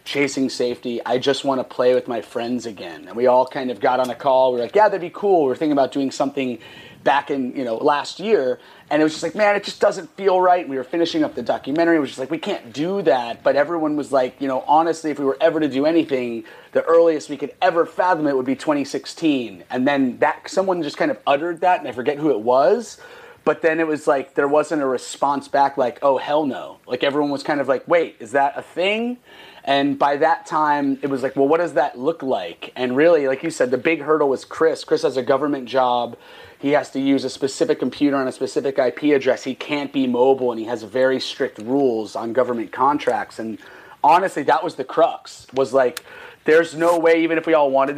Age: 30-49